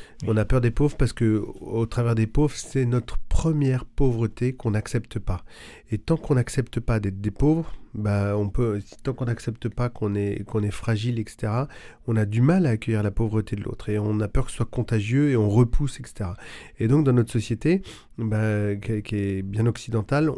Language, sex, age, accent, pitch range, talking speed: French, male, 40-59, French, 110-125 Hz, 205 wpm